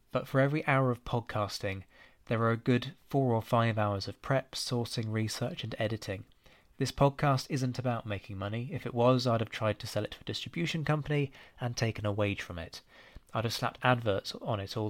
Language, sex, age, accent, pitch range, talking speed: English, male, 20-39, British, 105-130 Hz, 210 wpm